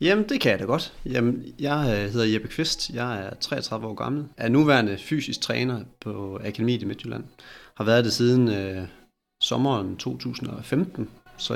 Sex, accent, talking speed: male, native, 165 wpm